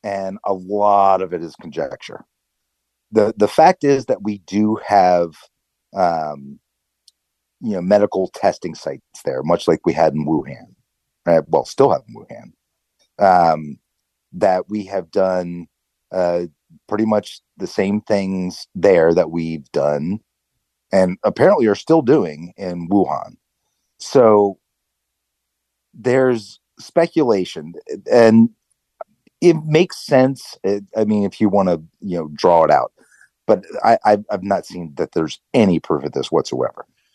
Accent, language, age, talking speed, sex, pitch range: American, English, 40-59, 140 wpm, male, 85-115 Hz